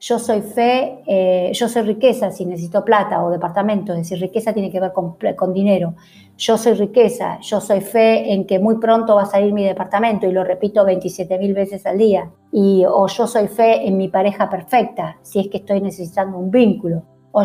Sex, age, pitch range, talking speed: female, 50-69, 195-235 Hz, 205 wpm